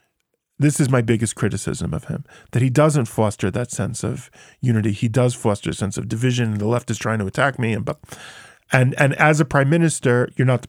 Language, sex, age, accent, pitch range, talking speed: English, male, 40-59, American, 120-150 Hz, 220 wpm